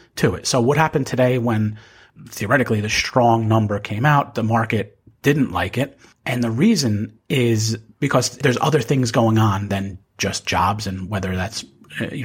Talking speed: 170 wpm